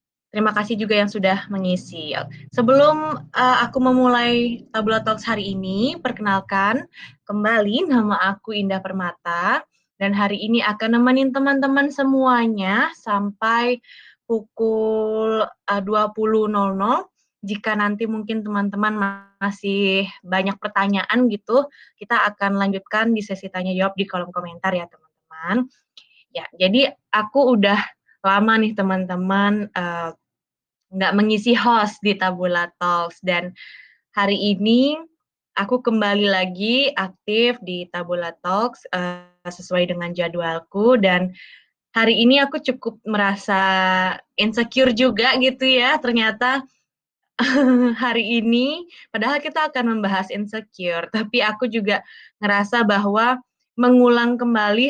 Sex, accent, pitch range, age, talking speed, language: female, native, 195-245 Hz, 20-39, 115 wpm, Indonesian